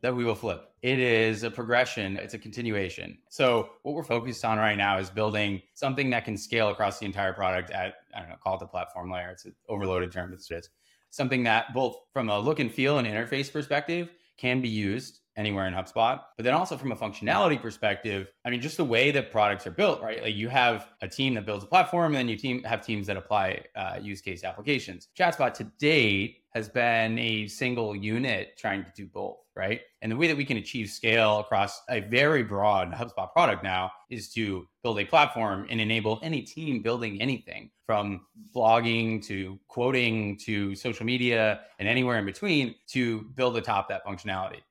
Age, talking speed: 20-39, 205 wpm